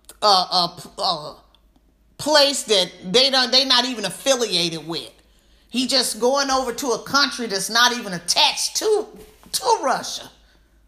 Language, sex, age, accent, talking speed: English, female, 40-59, American, 140 wpm